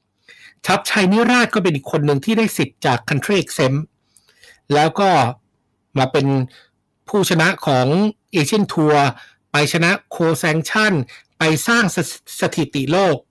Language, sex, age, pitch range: Thai, male, 60-79, 135-195 Hz